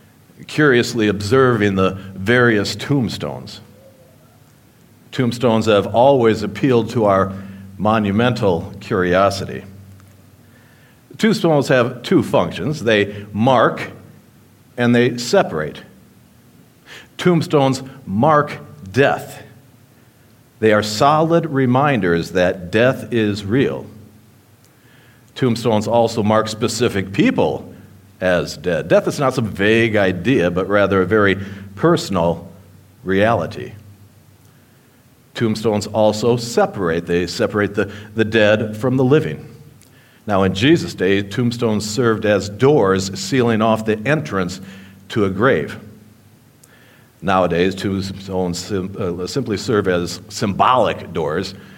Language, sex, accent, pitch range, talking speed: English, male, American, 100-125 Hz, 100 wpm